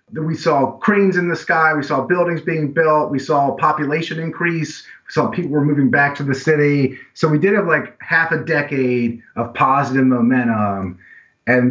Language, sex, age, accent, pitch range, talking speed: English, male, 30-49, American, 105-135 Hz, 185 wpm